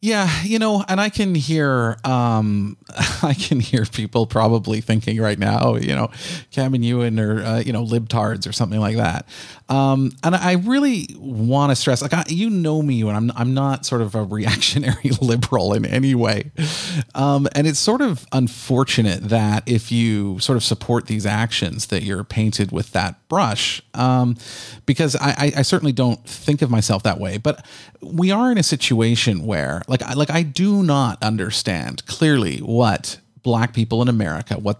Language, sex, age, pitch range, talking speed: English, male, 40-59, 110-140 Hz, 185 wpm